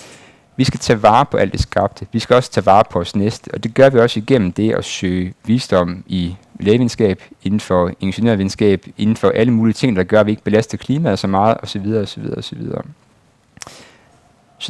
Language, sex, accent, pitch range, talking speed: Danish, male, native, 95-120 Hz, 200 wpm